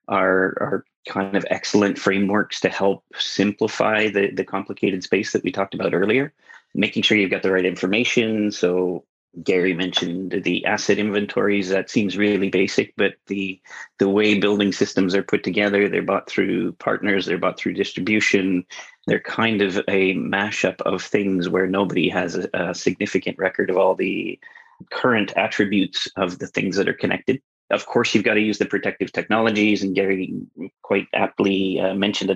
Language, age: English, 30-49